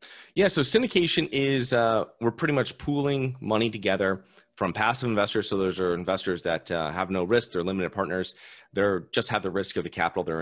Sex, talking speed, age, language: male, 200 wpm, 30-49, English